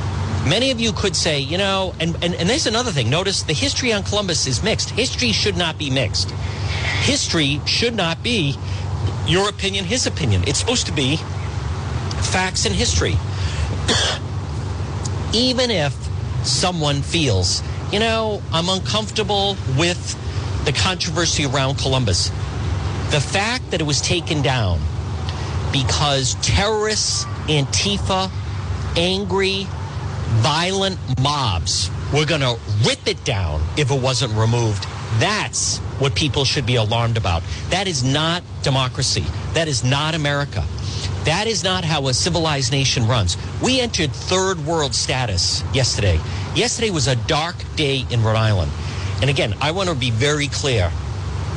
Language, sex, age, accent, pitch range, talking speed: English, male, 50-69, American, 100-135 Hz, 140 wpm